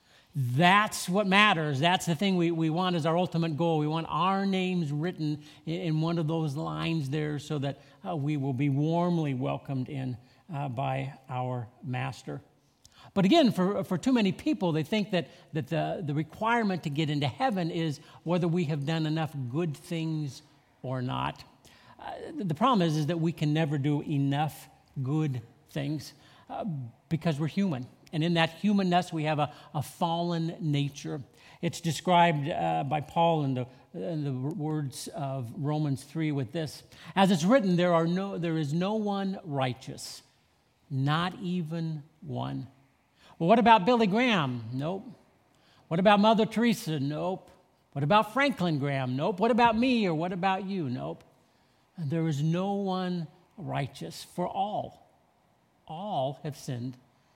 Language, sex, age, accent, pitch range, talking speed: English, male, 50-69, American, 145-180 Hz, 160 wpm